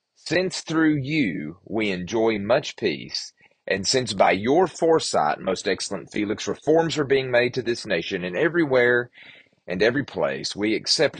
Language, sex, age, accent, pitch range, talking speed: English, male, 40-59, American, 100-140 Hz, 155 wpm